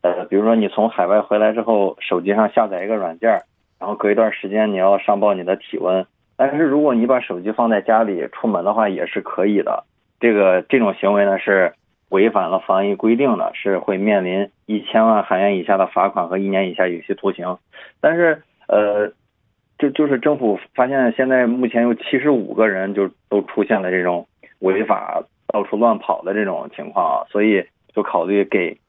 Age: 20-39